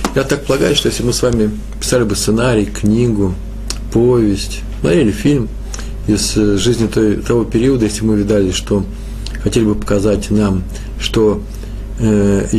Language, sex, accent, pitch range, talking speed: Russian, male, native, 105-120 Hz, 145 wpm